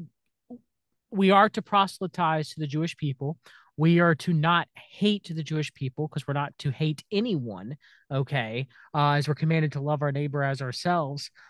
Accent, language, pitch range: American, English, 140-175 Hz